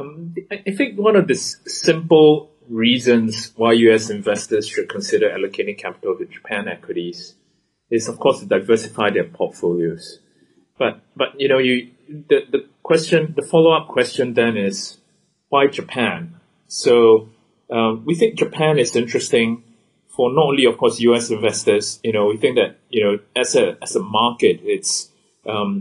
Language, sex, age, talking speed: English, male, 30-49, 155 wpm